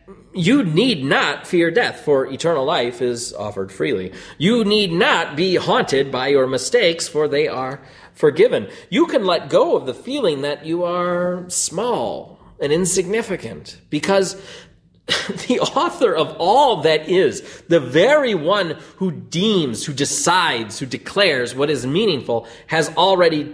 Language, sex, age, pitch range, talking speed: English, male, 30-49, 130-205 Hz, 145 wpm